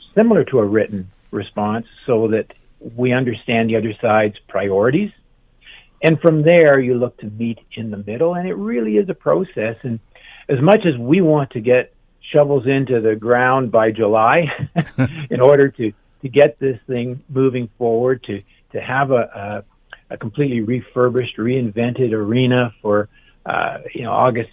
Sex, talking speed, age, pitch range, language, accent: male, 165 wpm, 50-69, 110-140 Hz, English, American